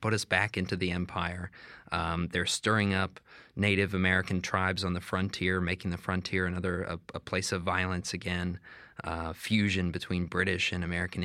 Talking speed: 170 wpm